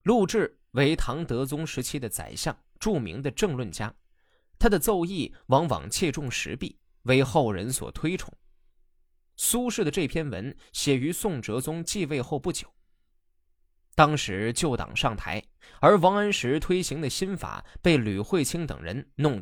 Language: Chinese